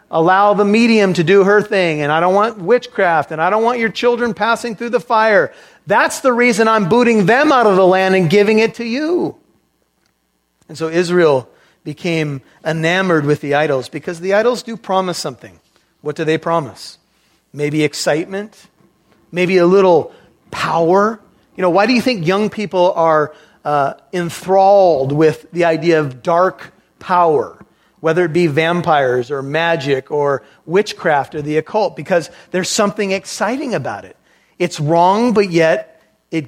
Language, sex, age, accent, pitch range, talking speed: English, male, 40-59, American, 155-200 Hz, 165 wpm